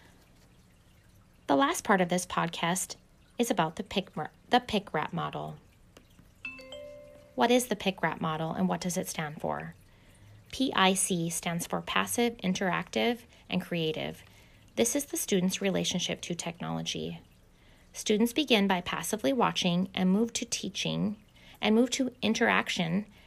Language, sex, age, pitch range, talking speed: English, female, 20-39, 140-205 Hz, 130 wpm